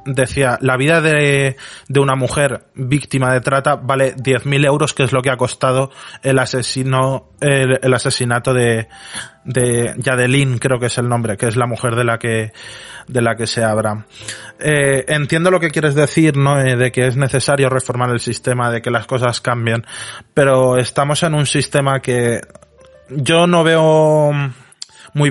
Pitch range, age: 125-145 Hz, 20-39